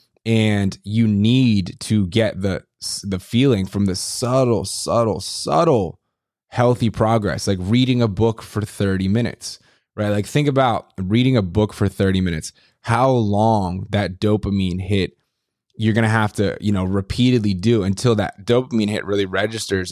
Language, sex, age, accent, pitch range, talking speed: English, male, 20-39, American, 100-115 Hz, 155 wpm